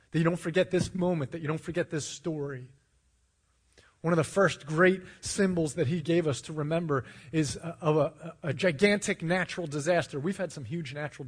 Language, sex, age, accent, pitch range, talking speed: English, male, 30-49, American, 125-175 Hz, 195 wpm